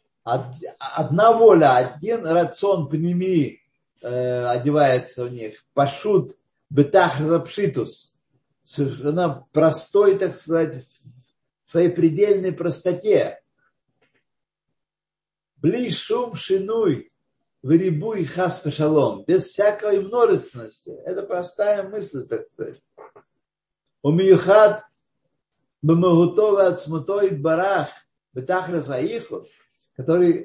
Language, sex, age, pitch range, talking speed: Russian, male, 50-69, 140-185 Hz, 80 wpm